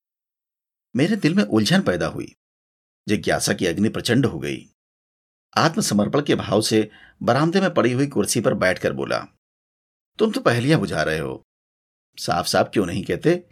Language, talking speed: Hindi, 155 wpm